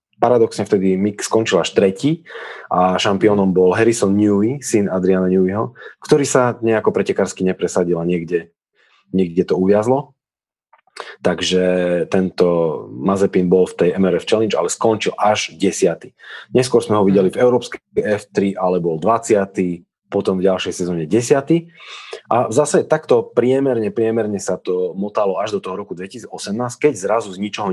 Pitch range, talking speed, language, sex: 90-115 Hz, 150 wpm, Slovak, male